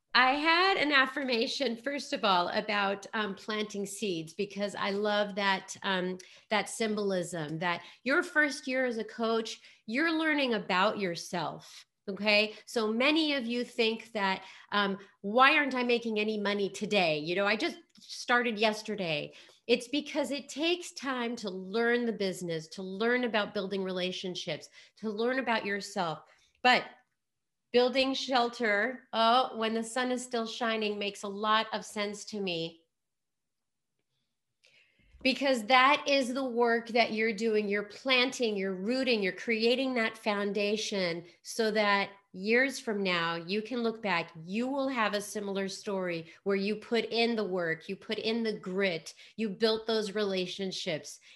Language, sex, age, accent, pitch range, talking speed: English, female, 30-49, American, 195-240 Hz, 155 wpm